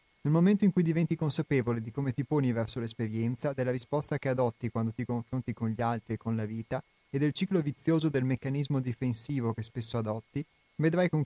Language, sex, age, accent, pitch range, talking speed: Italian, male, 30-49, native, 115-150 Hz, 205 wpm